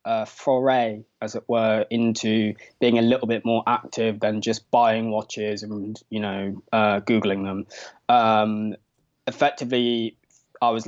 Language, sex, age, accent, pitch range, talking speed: English, male, 20-39, British, 105-120 Hz, 145 wpm